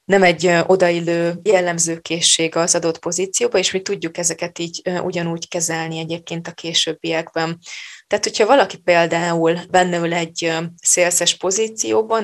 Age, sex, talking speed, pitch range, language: 20-39, female, 125 wpm, 165-180 Hz, Hungarian